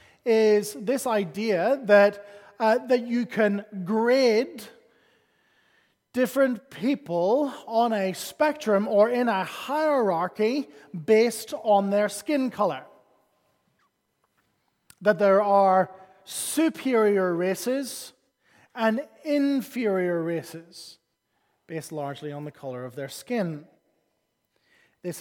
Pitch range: 175-230 Hz